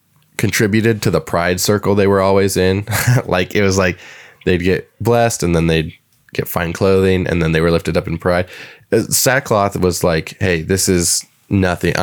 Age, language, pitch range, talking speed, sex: 20-39, English, 85-105 Hz, 190 wpm, male